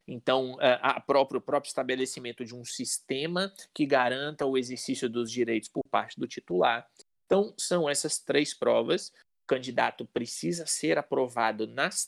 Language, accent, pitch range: Portuguese, Brazilian, 115-150 Hz